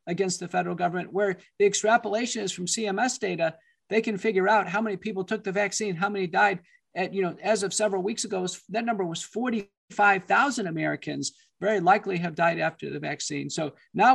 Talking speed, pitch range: 195 wpm, 180-215 Hz